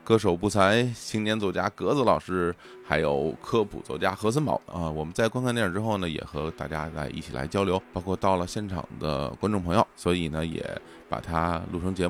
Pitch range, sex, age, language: 90-120 Hz, male, 20-39, Chinese